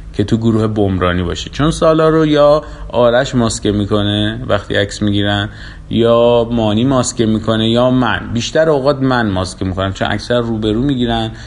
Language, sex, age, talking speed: Persian, male, 30-49, 155 wpm